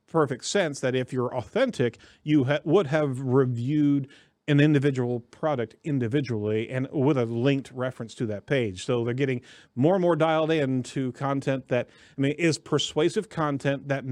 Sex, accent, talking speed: male, American, 165 wpm